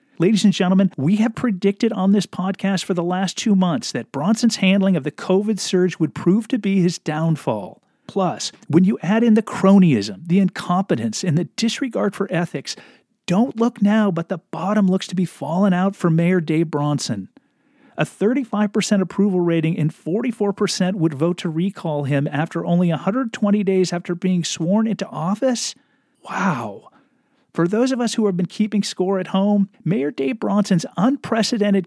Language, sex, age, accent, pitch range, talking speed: English, male, 40-59, American, 170-215 Hz, 175 wpm